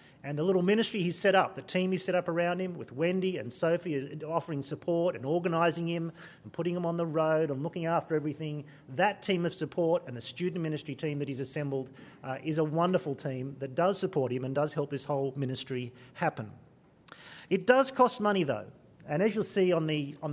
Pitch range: 150-180 Hz